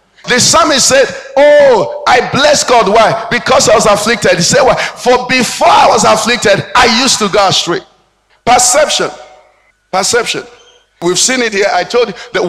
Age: 50-69